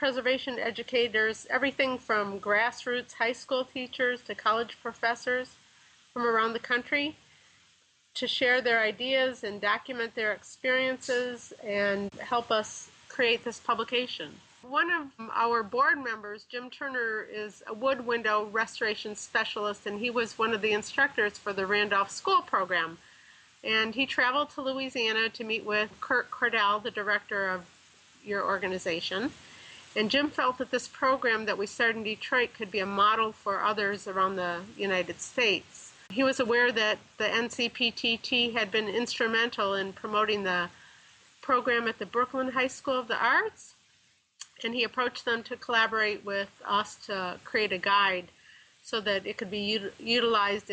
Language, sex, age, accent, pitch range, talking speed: English, female, 40-59, American, 205-245 Hz, 155 wpm